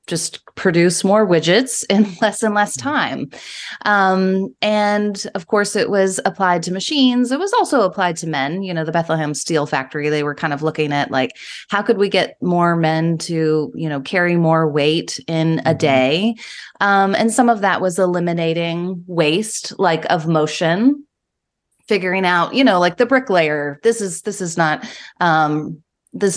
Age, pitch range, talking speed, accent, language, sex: 20-39, 160-205 Hz, 175 wpm, American, English, female